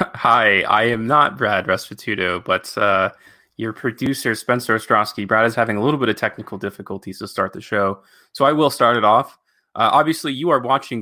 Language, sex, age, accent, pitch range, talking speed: English, male, 20-39, American, 105-135 Hz, 195 wpm